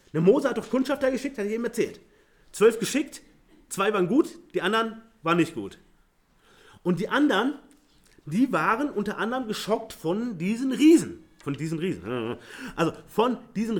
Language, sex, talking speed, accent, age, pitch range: German, male, 160 wpm, German, 30-49, 165-235 Hz